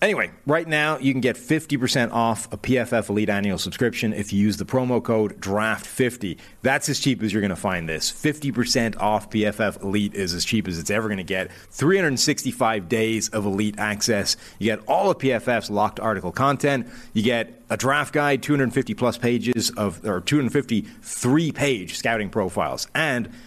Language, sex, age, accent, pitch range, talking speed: English, male, 30-49, American, 105-135 Hz, 180 wpm